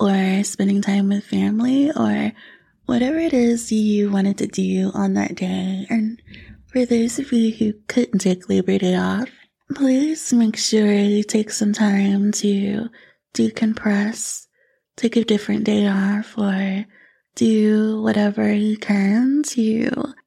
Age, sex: 20-39, female